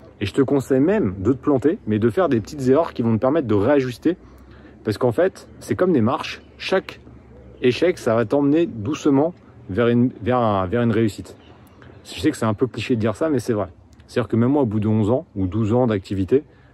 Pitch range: 105-140 Hz